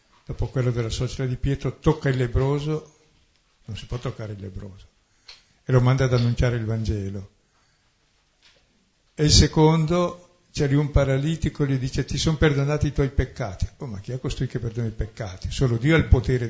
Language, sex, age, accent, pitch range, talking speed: Italian, male, 60-79, native, 115-140 Hz, 185 wpm